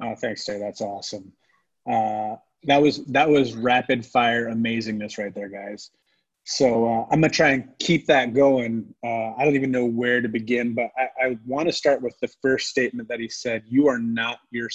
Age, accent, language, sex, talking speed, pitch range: 30-49, American, English, male, 210 wpm, 115-145 Hz